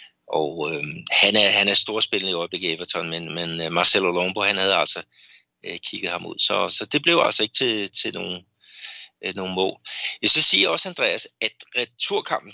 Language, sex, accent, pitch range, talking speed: Danish, male, native, 95-115 Hz, 185 wpm